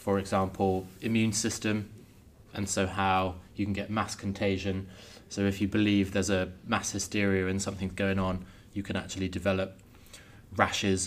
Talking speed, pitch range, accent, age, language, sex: 155 wpm, 95-105 Hz, British, 20-39, English, male